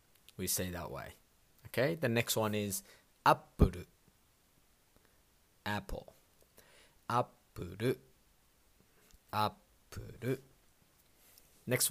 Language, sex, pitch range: Japanese, male, 90-115 Hz